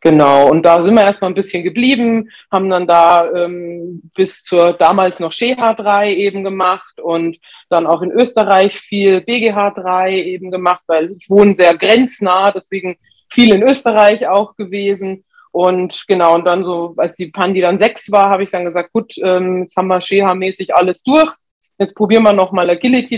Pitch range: 175-205 Hz